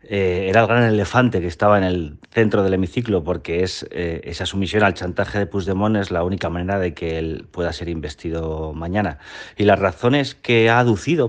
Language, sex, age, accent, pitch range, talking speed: Spanish, male, 30-49, Spanish, 85-105 Hz, 200 wpm